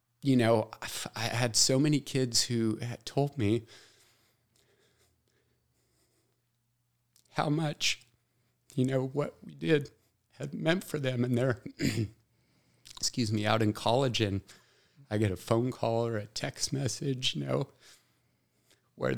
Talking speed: 140 wpm